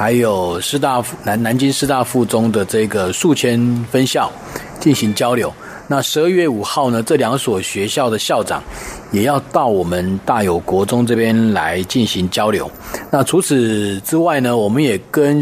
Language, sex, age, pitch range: Chinese, male, 40-59, 105-130 Hz